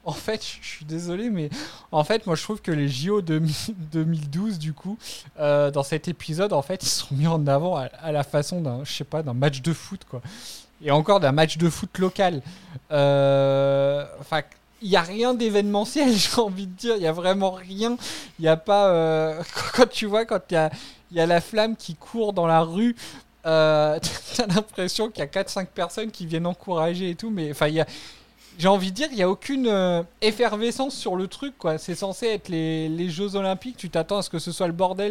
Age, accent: 20-39, French